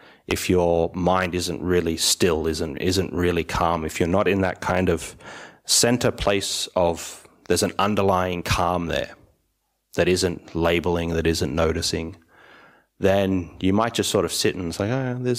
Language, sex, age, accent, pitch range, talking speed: English, male, 30-49, Australian, 85-95 Hz, 170 wpm